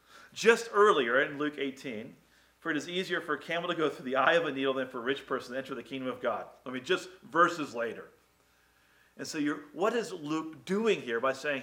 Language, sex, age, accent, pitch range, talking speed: English, male, 40-59, American, 115-150 Hz, 230 wpm